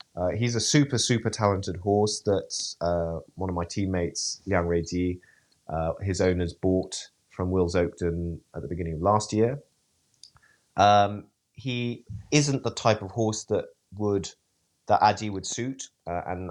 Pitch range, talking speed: 85-105 Hz, 155 wpm